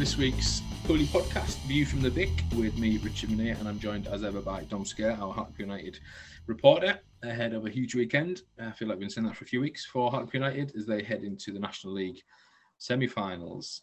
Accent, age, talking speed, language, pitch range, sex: British, 30-49, 220 wpm, English, 100-120 Hz, male